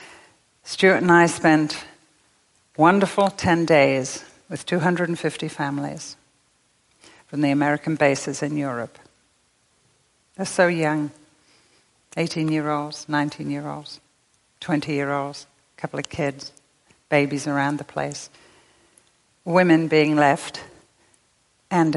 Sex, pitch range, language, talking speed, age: female, 140-170 Hz, English, 110 wpm, 60-79